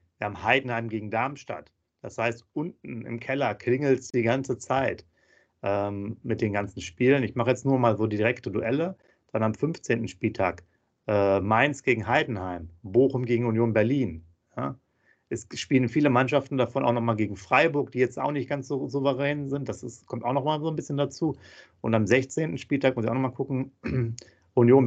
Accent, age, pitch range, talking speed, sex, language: German, 40-59, 105-130 Hz, 190 wpm, male, German